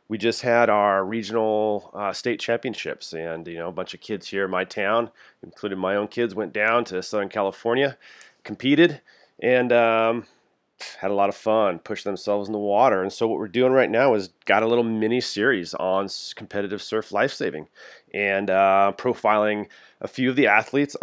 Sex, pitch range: male, 100-120 Hz